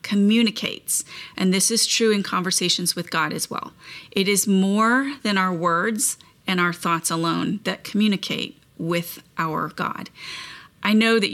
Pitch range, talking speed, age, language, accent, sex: 180-225 Hz, 155 wpm, 30-49, English, American, female